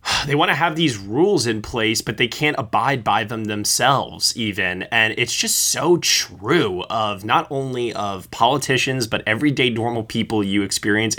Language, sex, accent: English, male, American